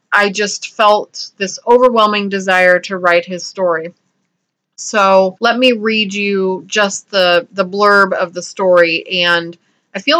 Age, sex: 30-49, female